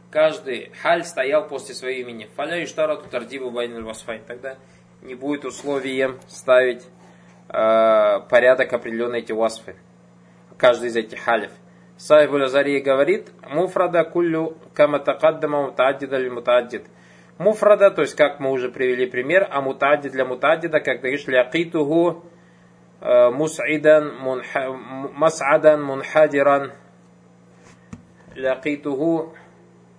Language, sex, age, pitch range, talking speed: Russian, male, 20-39, 110-155 Hz, 95 wpm